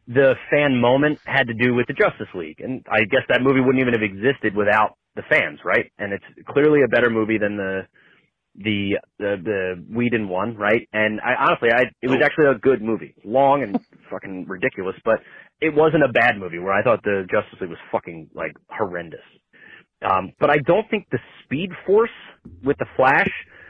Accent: American